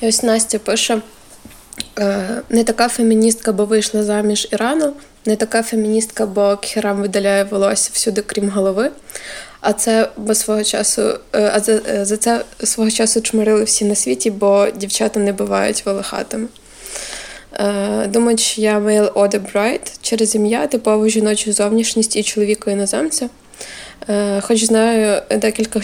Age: 20-39